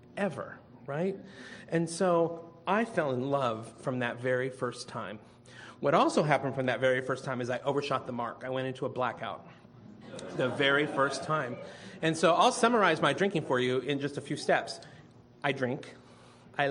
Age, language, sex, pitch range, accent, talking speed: 40-59, English, male, 130-190 Hz, American, 185 wpm